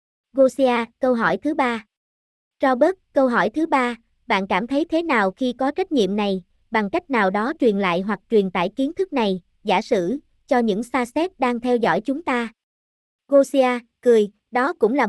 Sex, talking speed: male, 190 wpm